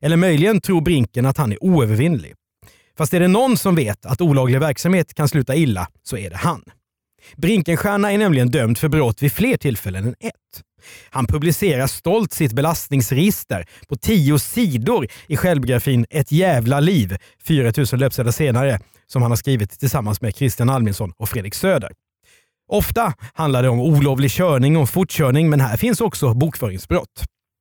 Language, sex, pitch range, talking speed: Swedish, male, 120-165 Hz, 165 wpm